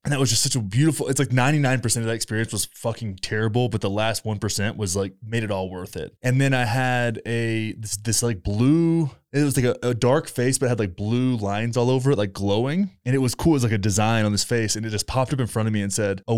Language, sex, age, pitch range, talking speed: English, male, 20-39, 110-135 Hz, 285 wpm